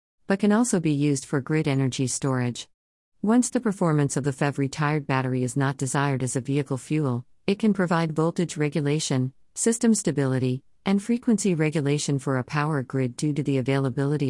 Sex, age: female, 50-69